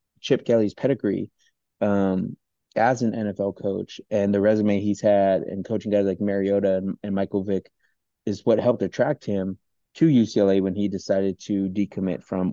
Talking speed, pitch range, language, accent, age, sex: 170 wpm, 95-105 Hz, English, American, 30-49, male